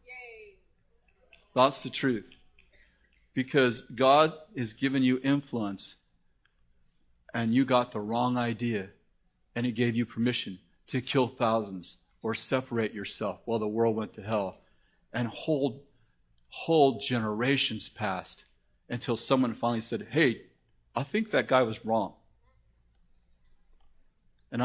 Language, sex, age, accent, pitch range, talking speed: English, male, 40-59, American, 105-130 Hz, 115 wpm